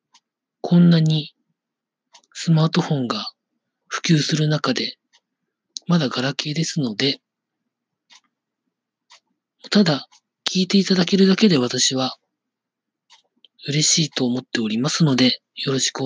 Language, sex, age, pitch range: Japanese, male, 40-59, 135-180 Hz